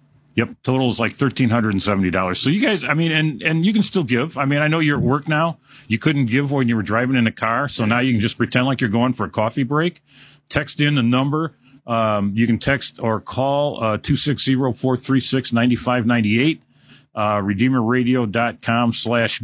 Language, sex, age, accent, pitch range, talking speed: English, male, 50-69, American, 115-145 Hz, 190 wpm